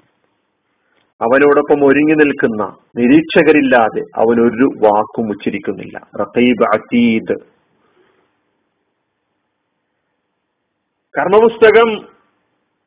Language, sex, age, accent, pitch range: Malayalam, male, 40-59, native, 130-180 Hz